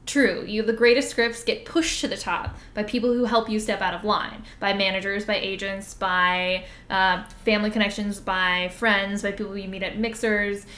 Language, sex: English, female